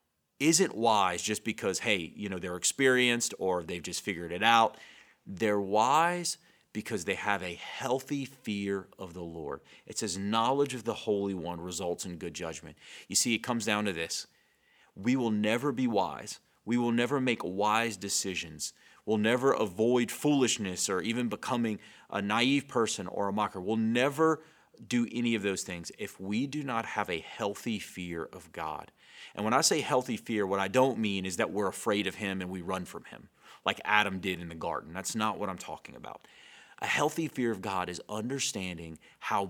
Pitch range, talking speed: 95-125 Hz, 195 wpm